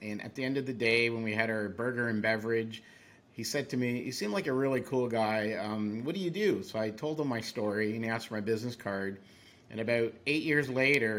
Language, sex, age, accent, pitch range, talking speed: English, male, 50-69, American, 110-130 Hz, 250 wpm